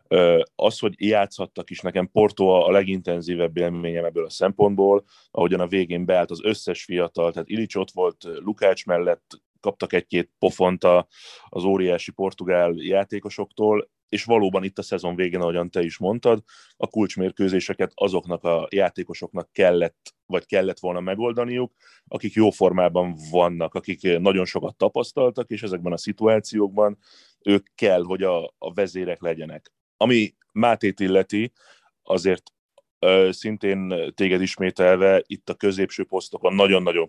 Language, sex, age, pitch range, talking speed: Hungarian, male, 30-49, 85-105 Hz, 135 wpm